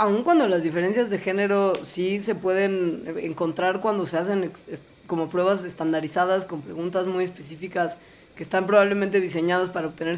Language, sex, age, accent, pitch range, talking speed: Spanish, female, 20-39, Mexican, 170-215 Hz, 155 wpm